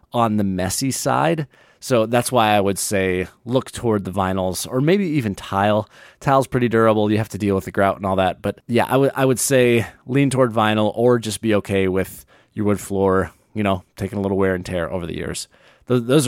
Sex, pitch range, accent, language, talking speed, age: male, 100-135 Hz, American, English, 230 wpm, 30-49